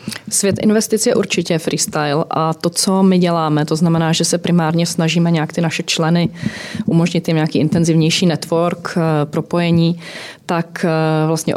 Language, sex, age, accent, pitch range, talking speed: Czech, female, 30-49, native, 155-170 Hz, 145 wpm